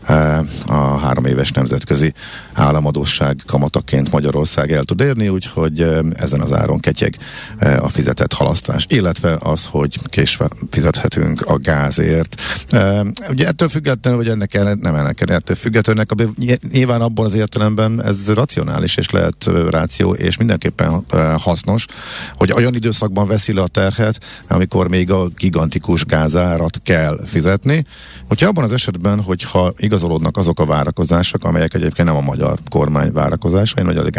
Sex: male